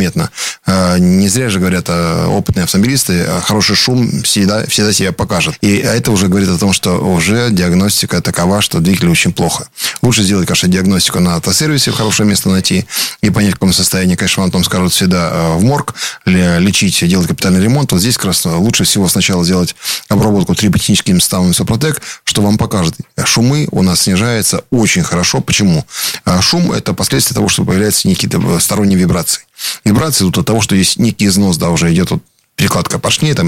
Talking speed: 175 wpm